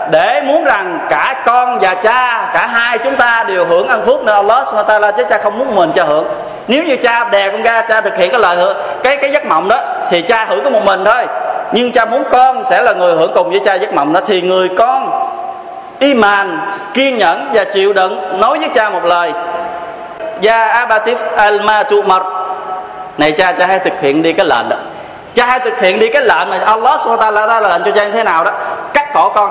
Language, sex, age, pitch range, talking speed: Vietnamese, male, 20-39, 180-235 Hz, 210 wpm